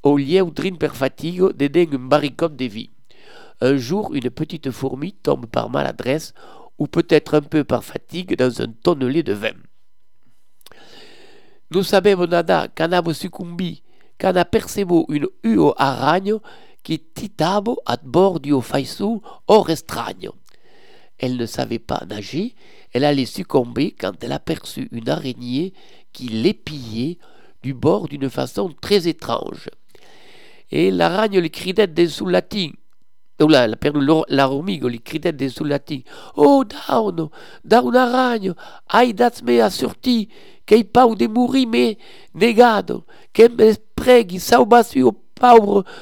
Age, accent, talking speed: 60-79, French, 135 wpm